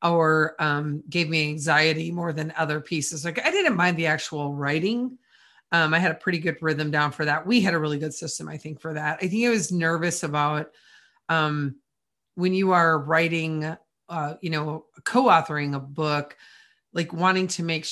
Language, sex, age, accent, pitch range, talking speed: English, female, 30-49, American, 155-190 Hz, 190 wpm